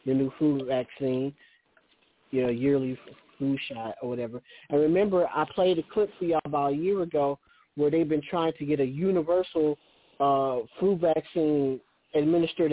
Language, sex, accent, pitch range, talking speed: English, male, American, 135-185 Hz, 165 wpm